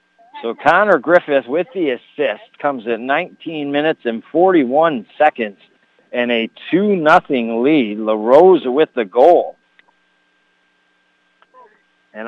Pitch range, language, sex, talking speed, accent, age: 150-230 Hz, English, male, 110 wpm, American, 50-69